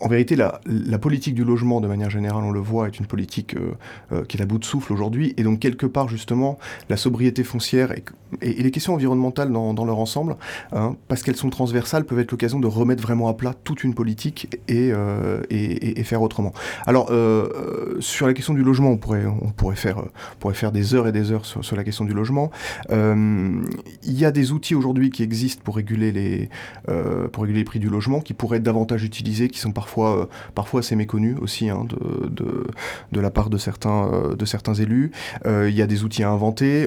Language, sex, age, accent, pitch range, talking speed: French, male, 30-49, French, 105-125 Hz, 220 wpm